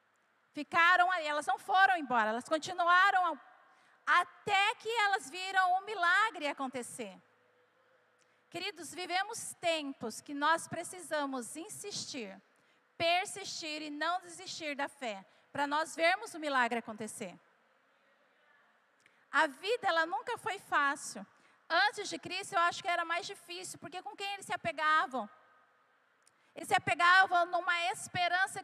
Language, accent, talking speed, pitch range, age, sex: Portuguese, Brazilian, 130 wpm, 300-375 Hz, 40-59, female